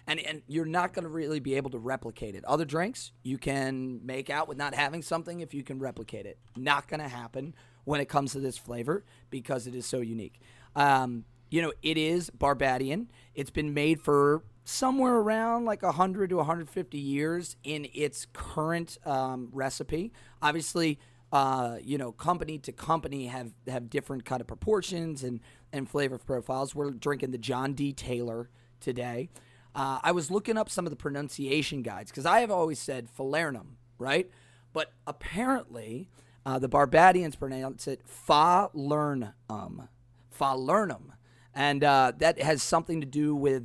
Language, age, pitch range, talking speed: English, 30-49, 120-150 Hz, 170 wpm